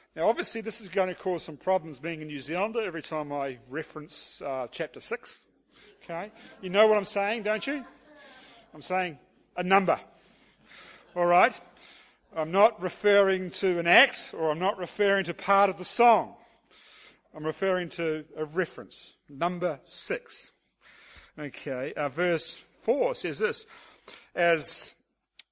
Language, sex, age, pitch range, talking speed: English, male, 50-69, 160-205 Hz, 150 wpm